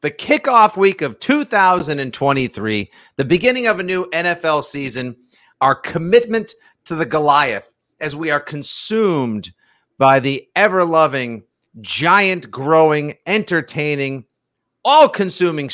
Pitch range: 125-170 Hz